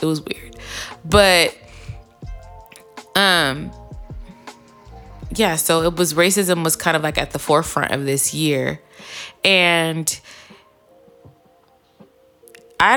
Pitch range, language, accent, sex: 145-200 Hz, English, American, female